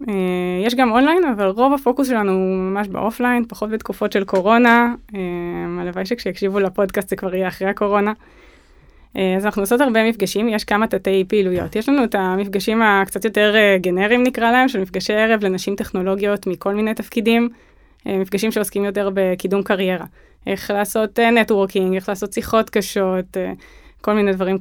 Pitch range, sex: 190-220 Hz, female